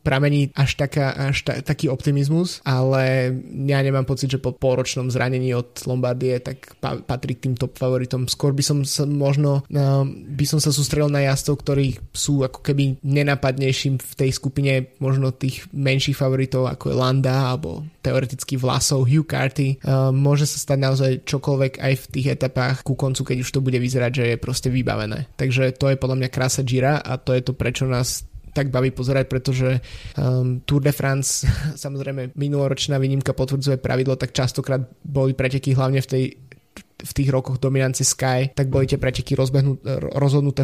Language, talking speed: Slovak, 175 wpm